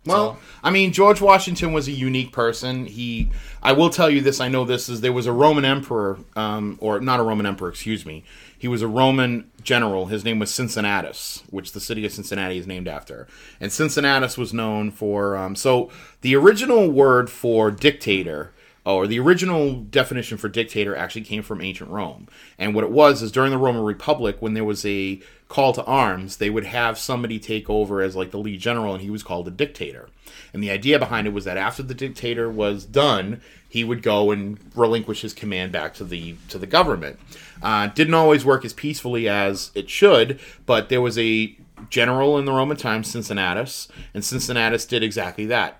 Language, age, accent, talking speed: English, 30-49, American, 205 wpm